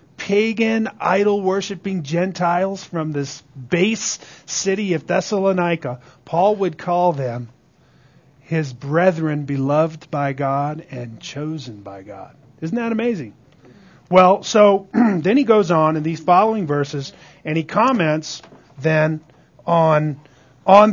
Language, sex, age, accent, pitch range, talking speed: English, male, 40-59, American, 155-200 Hz, 120 wpm